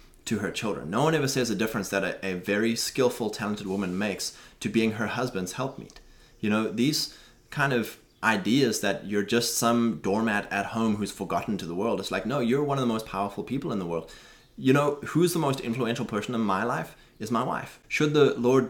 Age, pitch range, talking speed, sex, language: 20-39, 105-125 Hz, 220 wpm, male, English